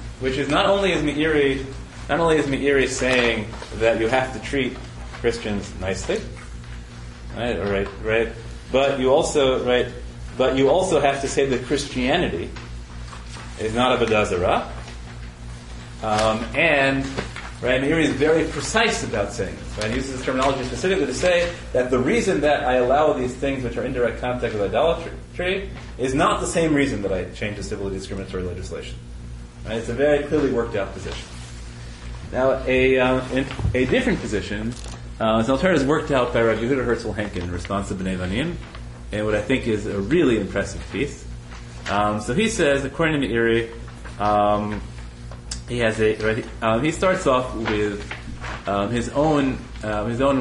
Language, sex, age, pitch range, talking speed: English, male, 30-49, 95-130 Hz, 175 wpm